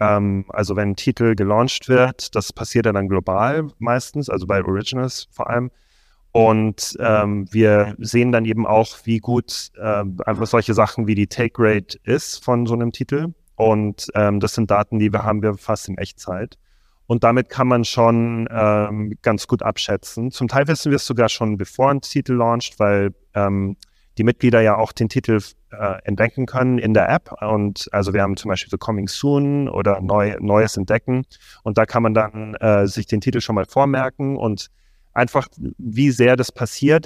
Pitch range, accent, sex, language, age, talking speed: 105-120 Hz, German, male, German, 30-49, 190 wpm